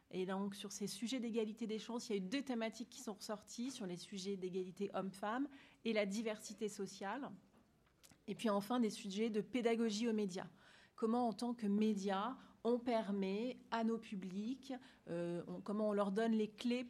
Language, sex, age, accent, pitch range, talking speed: French, female, 30-49, French, 195-235 Hz, 190 wpm